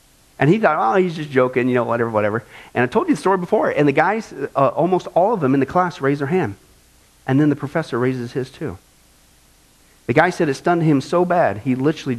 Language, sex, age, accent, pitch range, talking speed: English, male, 40-59, American, 120-180 Hz, 240 wpm